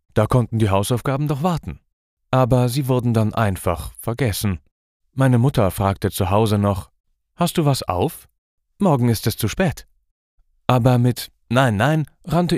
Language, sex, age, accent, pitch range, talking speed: German, male, 40-59, German, 95-125 Hz, 155 wpm